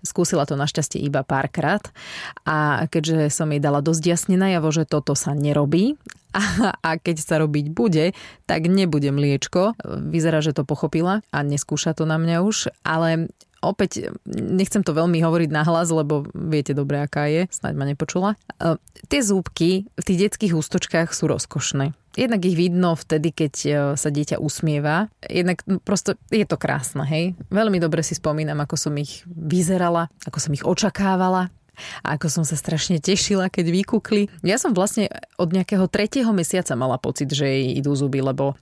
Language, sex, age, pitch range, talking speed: Slovak, female, 20-39, 150-190 Hz, 165 wpm